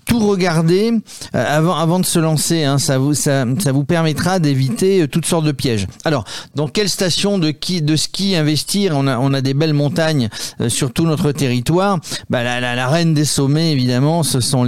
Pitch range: 125-165 Hz